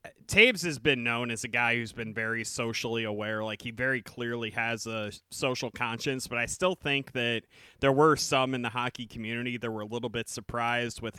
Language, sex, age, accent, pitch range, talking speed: English, male, 30-49, American, 115-130 Hz, 210 wpm